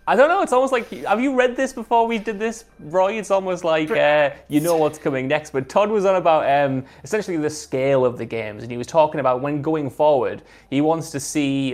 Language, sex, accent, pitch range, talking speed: English, male, British, 125-145 Hz, 245 wpm